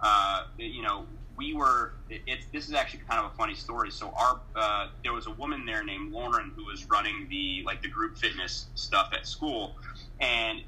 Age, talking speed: 30-49, 210 wpm